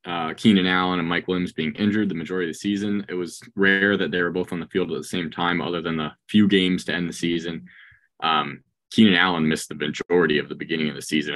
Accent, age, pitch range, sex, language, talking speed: American, 20-39, 80-95 Hz, male, English, 255 wpm